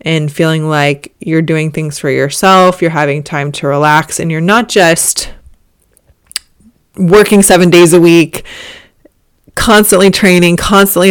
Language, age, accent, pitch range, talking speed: English, 20-39, American, 155-185 Hz, 135 wpm